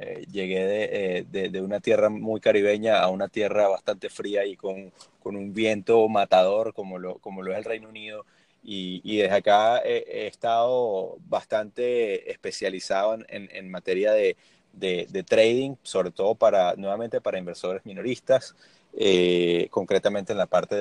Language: Spanish